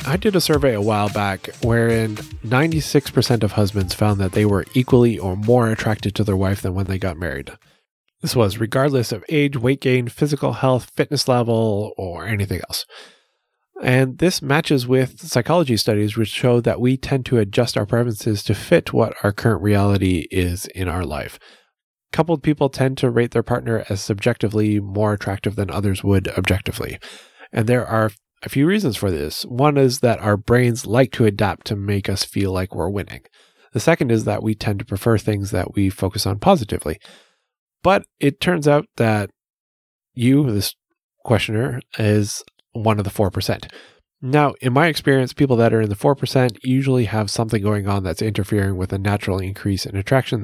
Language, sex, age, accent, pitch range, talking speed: English, male, 30-49, American, 100-130 Hz, 185 wpm